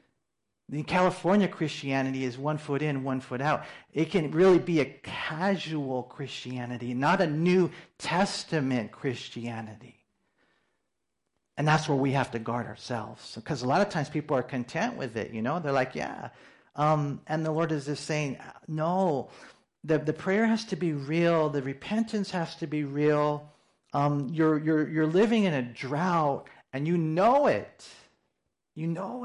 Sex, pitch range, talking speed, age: male, 135-180 Hz, 165 wpm, 40-59